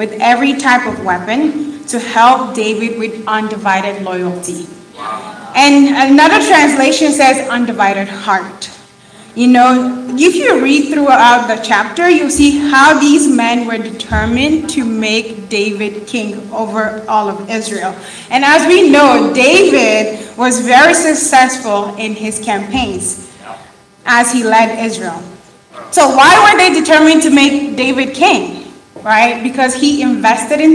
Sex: female